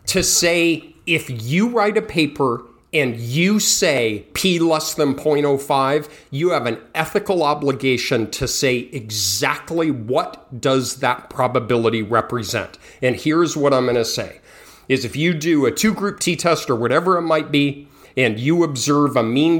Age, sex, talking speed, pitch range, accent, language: 40-59, male, 155 wpm, 130-165 Hz, American, English